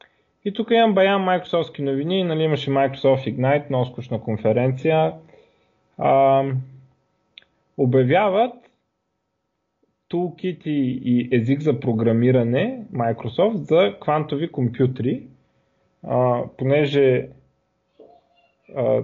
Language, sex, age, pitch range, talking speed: Bulgarian, male, 20-39, 120-150 Hz, 80 wpm